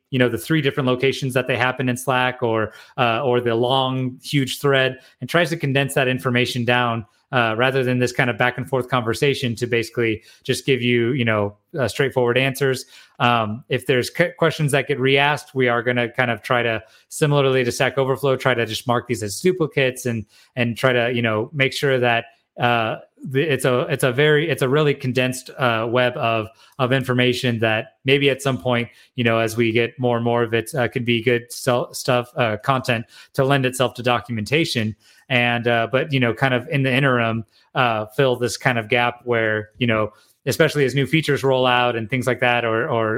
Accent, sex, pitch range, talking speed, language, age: American, male, 115-135 Hz, 215 wpm, English, 30-49